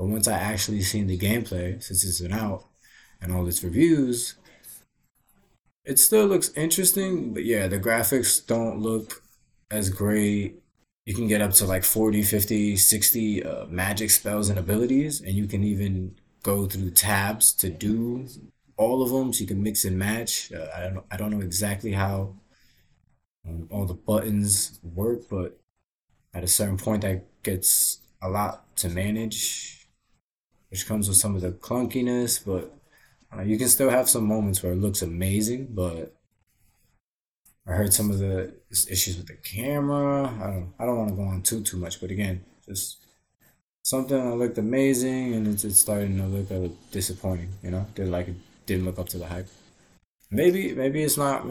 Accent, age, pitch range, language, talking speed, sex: American, 20-39, 95-115 Hz, English, 175 wpm, male